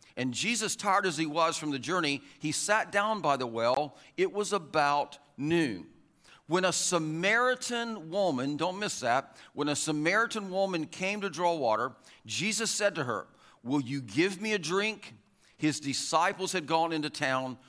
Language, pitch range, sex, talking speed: English, 145-205 Hz, male, 170 wpm